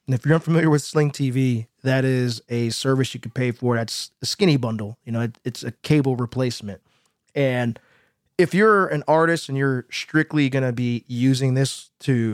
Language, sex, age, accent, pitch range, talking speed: English, male, 20-39, American, 120-155 Hz, 190 wpm